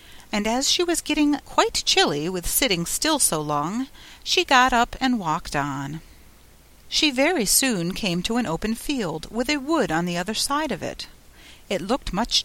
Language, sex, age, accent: Korean, female, 40-59, American